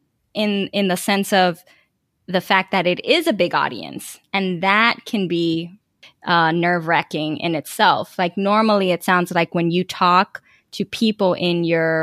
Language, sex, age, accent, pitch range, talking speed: English, female, 20-39, American, 170-200 Hz, 170 wpm